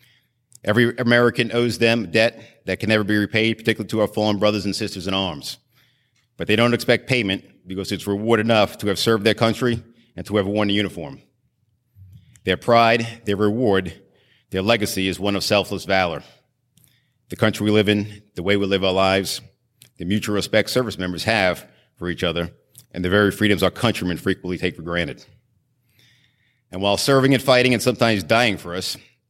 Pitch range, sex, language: 100-120 Hz, male, English